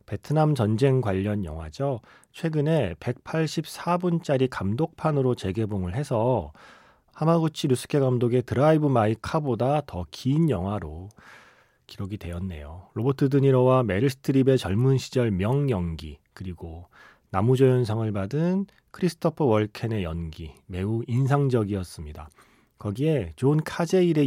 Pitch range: 95-145 Hz